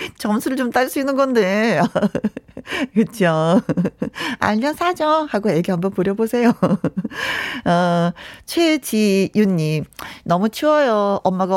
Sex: female